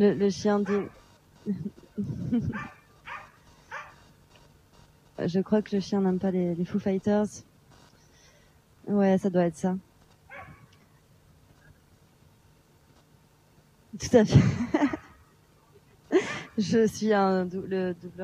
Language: French